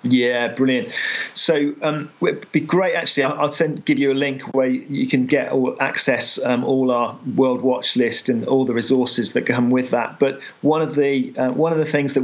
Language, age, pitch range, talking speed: English, 40-59, 120-135 Hz, 215 wpm